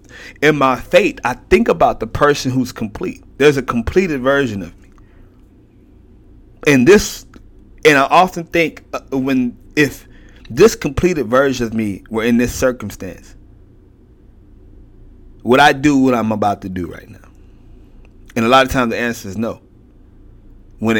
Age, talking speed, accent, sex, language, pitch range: 30-49, 150 wpm, American, male, English, 100-125 Hz